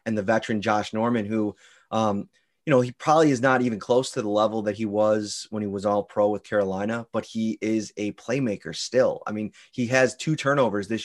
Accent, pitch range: American, 105-125 Hz